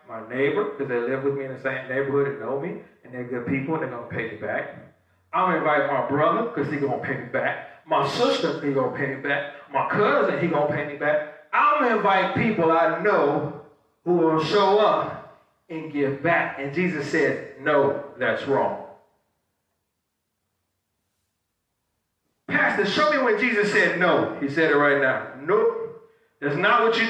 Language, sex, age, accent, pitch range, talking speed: English, male, 40-59, American, 145-215 Hz, 200 wpm